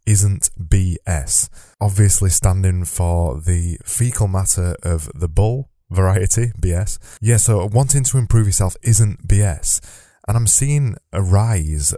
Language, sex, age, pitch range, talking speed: English, male, 20-39, 85-105 Hz, 130 wpm